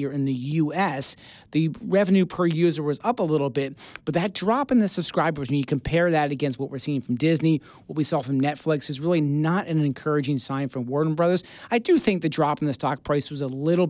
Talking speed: 235 wpm